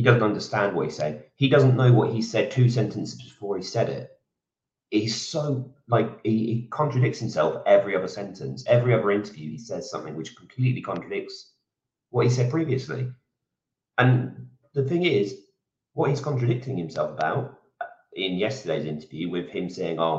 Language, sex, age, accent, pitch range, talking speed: English, male, 30-49, British, 105-140 Hz, 165 wpm